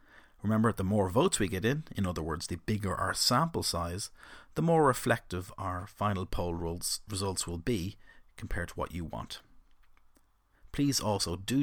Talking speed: 165 wpm